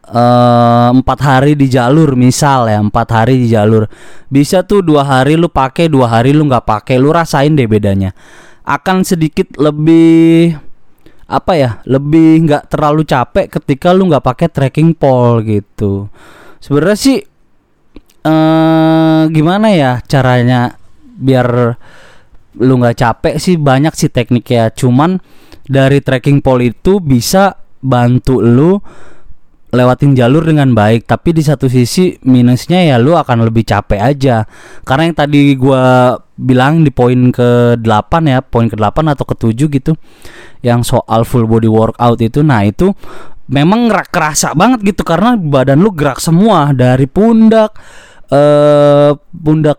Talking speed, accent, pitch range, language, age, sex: 140 wpm, native, 125-165 Hz, Indonesian, 20-39, male